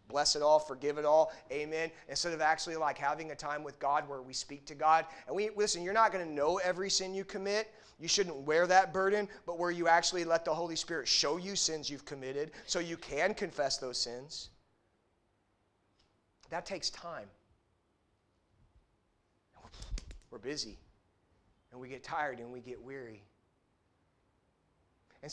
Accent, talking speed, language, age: American, 170 wpm, English, 30-49